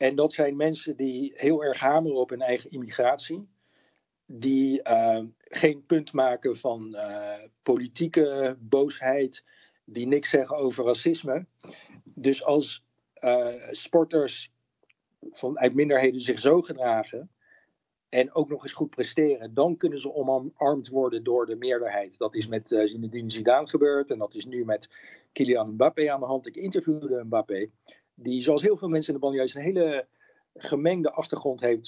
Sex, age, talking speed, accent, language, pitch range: male, 50-69, 155 wpm, Dutch, Dutch, 125-155 Hz